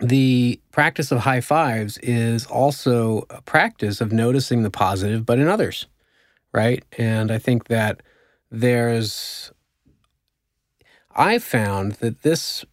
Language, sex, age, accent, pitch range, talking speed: English, male, 30-49, American, 105-125 Hz, 125 wpm